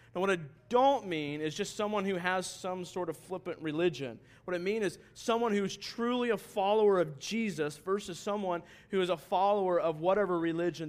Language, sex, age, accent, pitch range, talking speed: English, male, 40-59, American, 135-195 Hz, 200 wpm